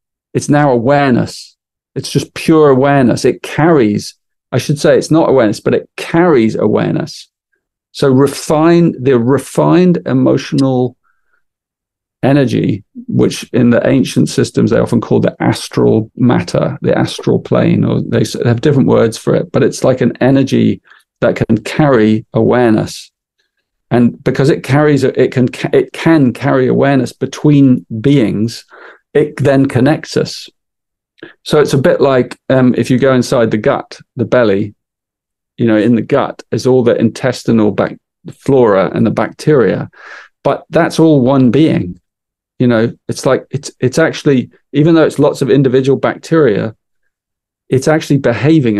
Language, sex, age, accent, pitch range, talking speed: Hebrew, male, 40-59, British, 120-150 Hz, 150 wpm